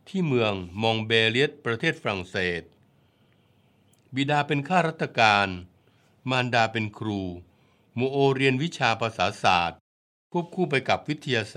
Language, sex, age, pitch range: Thai, male, 60-79, 105-135 Hz